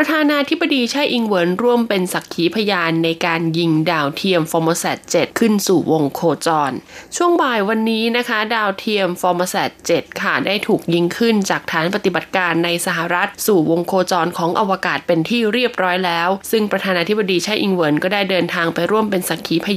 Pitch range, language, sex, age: 170-220 Hz, Thai, female, 20-39